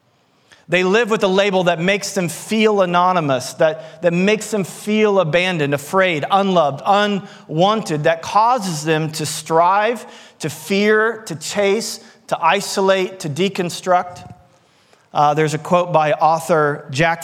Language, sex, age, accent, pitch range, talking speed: English, male, 40-59, American, 150-195 Hz, 135 wpm